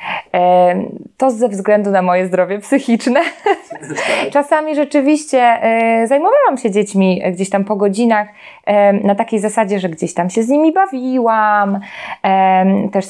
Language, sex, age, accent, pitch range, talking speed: Polish, female, 20-39, native, 180-220 Hz, 125 wpm